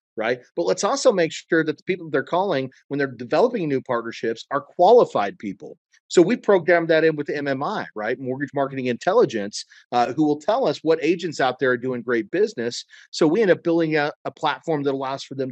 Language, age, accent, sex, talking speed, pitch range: English, 40-59, American, male, 215 wpm, 130-185 Hz